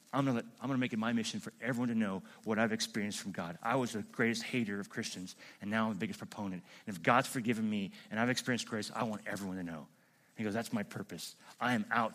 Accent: American